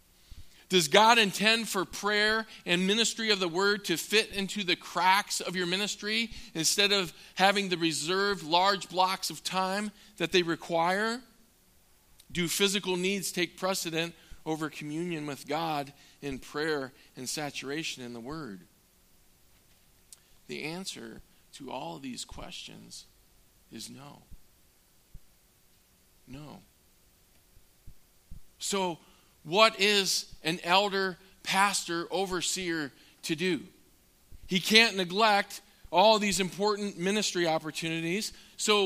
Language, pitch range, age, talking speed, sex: English, 155-200 Hz, 40-59, 115 wpm, male